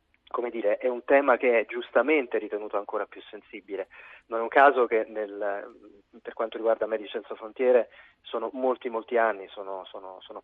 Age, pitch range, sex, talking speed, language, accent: 30-49, 105-125 Hz, male, 180 wpm, Italian, native